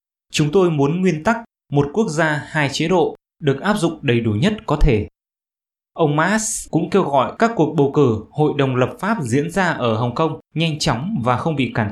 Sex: male